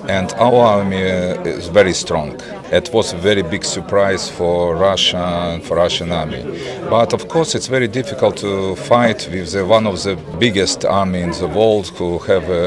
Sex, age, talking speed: male, 40-59, 180 wpm